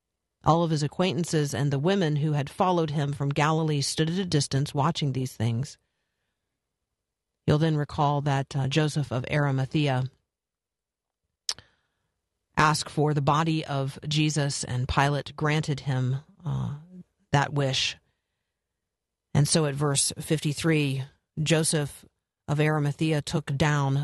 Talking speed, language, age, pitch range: 125 wpm, English, 40-59, 135-160 Hz